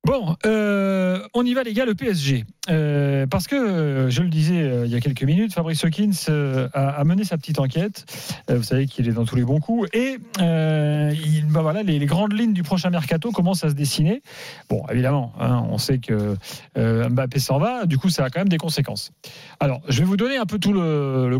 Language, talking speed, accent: French, 235 wpm, French